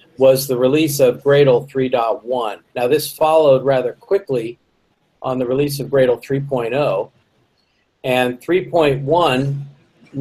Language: English